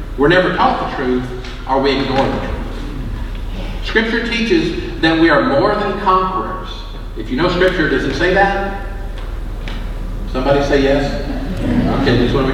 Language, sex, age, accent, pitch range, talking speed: English, male, 50-69, American, 105-145 Hz, 165 wpm